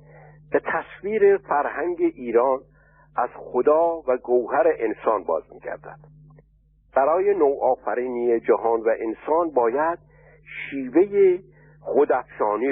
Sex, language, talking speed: male, Persian, 90 wpm